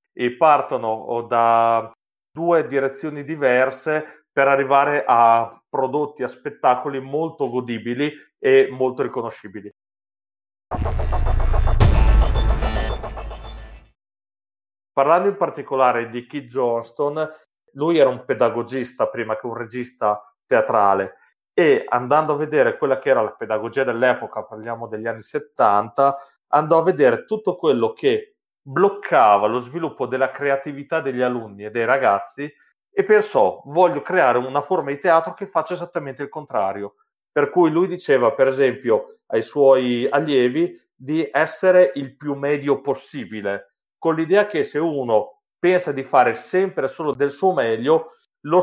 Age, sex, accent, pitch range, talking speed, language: 30-49, male, native, 115-170 Hz, 130 wpm, Italian